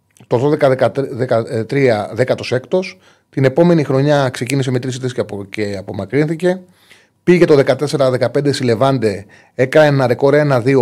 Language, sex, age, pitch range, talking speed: Greek, male, 30-49, 110-145 Hz, 100 wpm